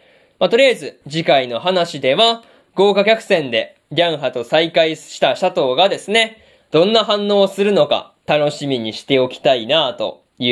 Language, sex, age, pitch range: Japanese, male, 20-39, 145-225 Hz